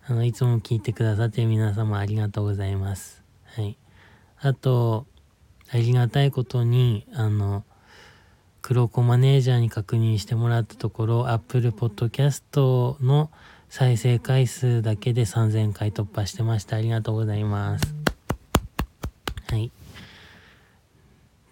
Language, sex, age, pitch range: Japanese, male, 20-39, 105-130 Hz